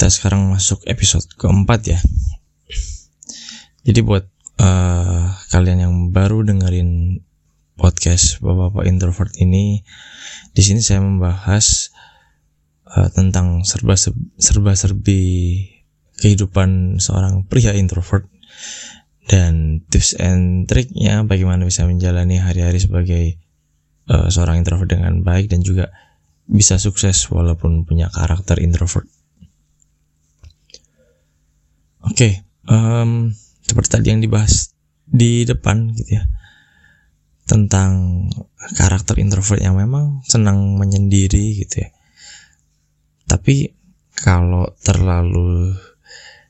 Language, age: Indonesian, 20-39